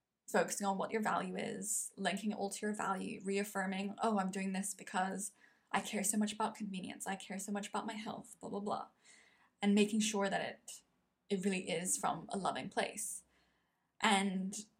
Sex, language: female, English